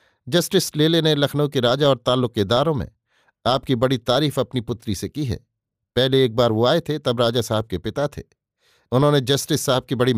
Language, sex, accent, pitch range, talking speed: Hindi, male, native, 120-150 Hz, 200 wpm